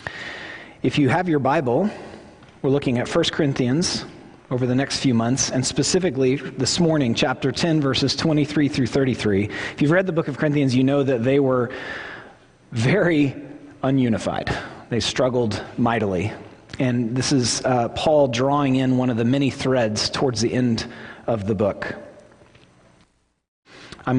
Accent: American